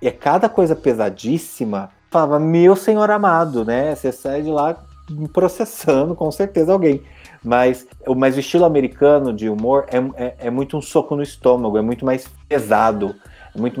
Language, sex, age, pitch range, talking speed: Portuguese, male, 20-39, 120-155 Hz, 165 wpm